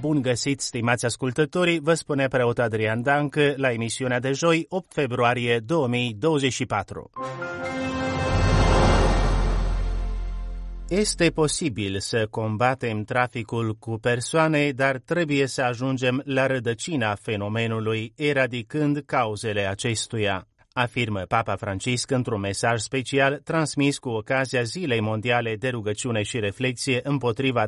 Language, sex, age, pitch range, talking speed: Romanian, male, 30-49, 110-135 Hz, 105 wpm